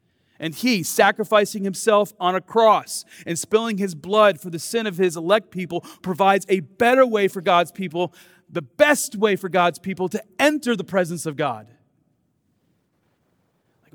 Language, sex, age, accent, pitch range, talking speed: English, male, 40-59, American, 120-205 Hz, 165 wpm